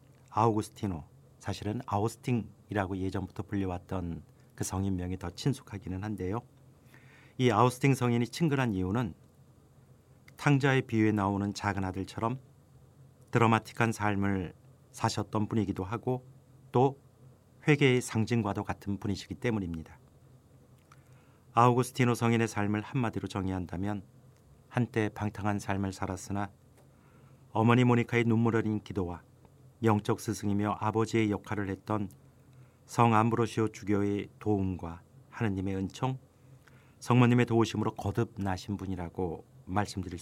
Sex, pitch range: male, 100-130 Hz